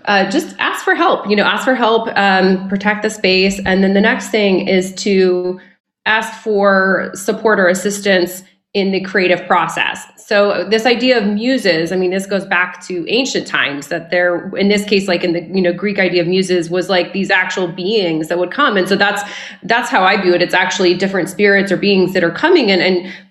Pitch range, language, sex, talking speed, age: 185-210 Hz, English, female, 215 wpm, 20-39